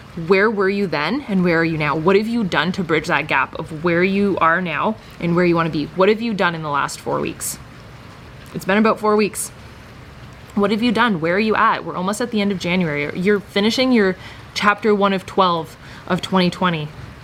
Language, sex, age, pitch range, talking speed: English, female, 20-39, 160-205 Hz, 225 wpm